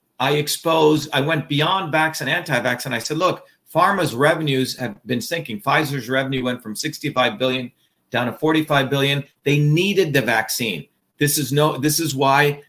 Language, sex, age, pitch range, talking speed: English, male, 40-59, 135-165 Hz, 175 wpm